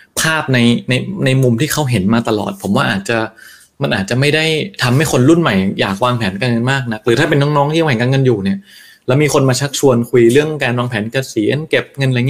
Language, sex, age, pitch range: Thai, male, 20-39, 110-145 Hz